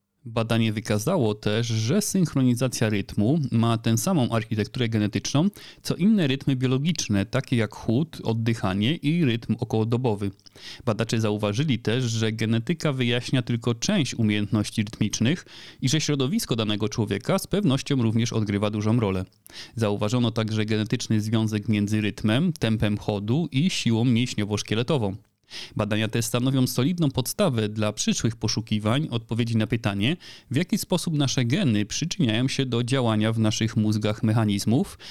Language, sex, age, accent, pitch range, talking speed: Polish, male, 30-49, native, 105-135 Hz, 135 wpm